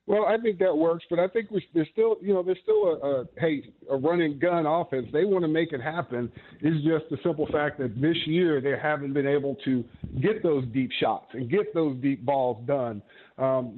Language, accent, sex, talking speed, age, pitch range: English, American, male, 225 wpm, 50-69, 145-180 Hz